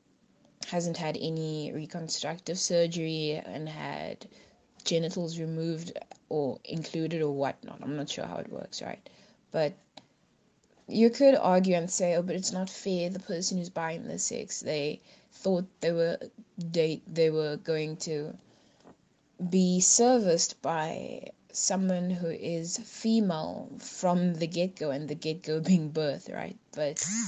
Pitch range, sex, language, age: 155-185 Hz, female, English, 20-39